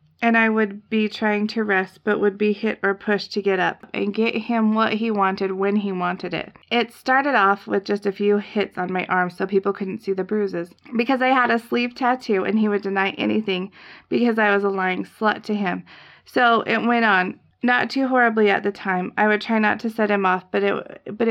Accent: American